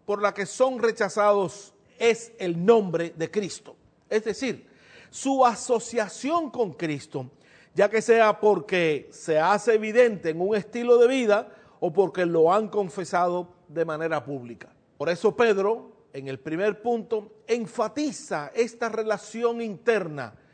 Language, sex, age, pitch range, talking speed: Spanish, male, 50-69, 170-225 Hz, 135 wpm